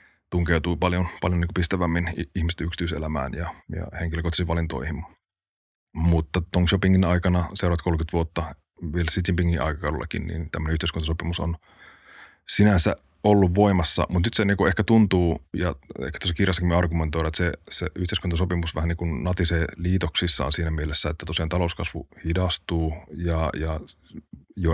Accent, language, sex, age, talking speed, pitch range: native, Finnish, male, 30-49, 135 wpm, 80-90 Hz